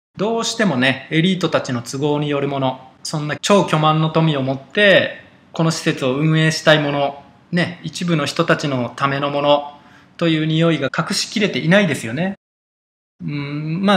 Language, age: Japanese, 20-39